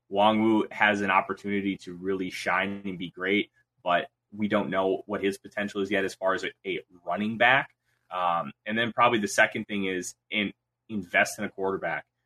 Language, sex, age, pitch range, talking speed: English, male, 20-39, 100-120 Hz, 195 wpm